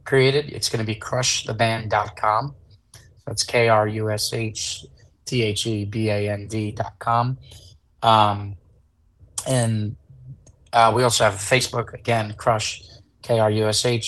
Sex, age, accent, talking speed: male, 20-39, American, 85 wpm